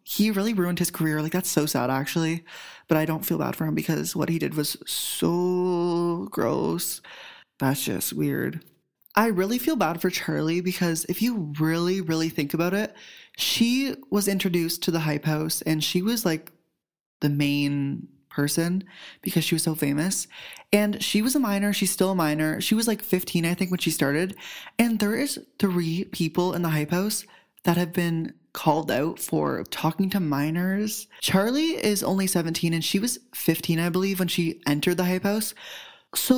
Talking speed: 185 wpm